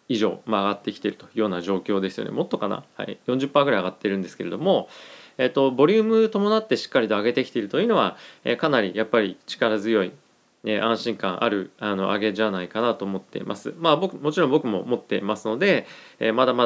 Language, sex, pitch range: Japanese, male, 100-135 Hz